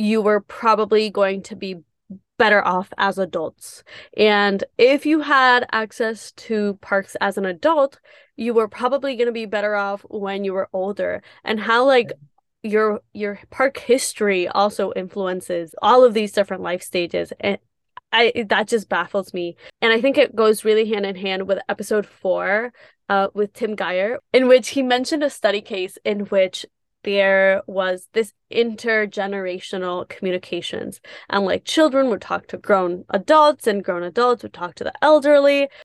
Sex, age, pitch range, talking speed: female, 20-39, 195-235 Hz, 165 wpm